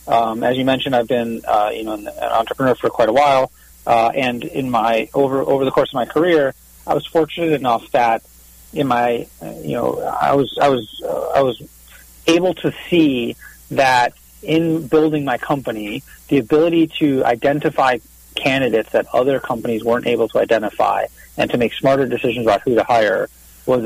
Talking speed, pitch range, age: 180 wpm, 110-135 Hz, 30-49